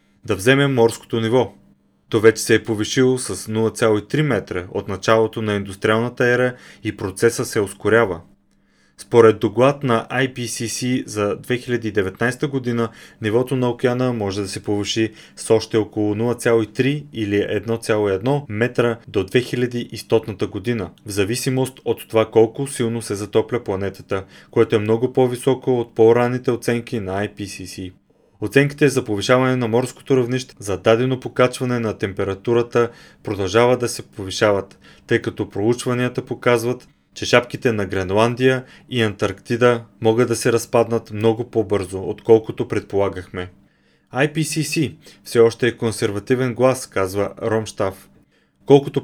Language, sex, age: Bulgarian, male, 30-49